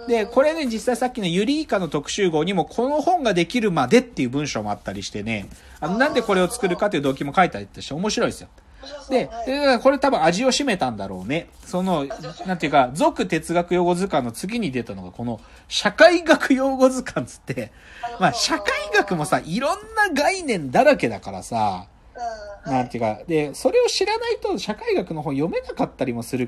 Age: 40-59